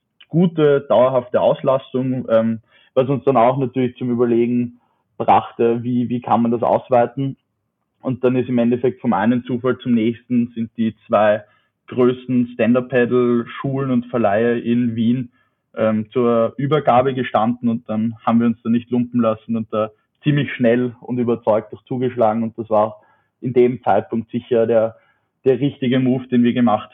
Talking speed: 160 wpm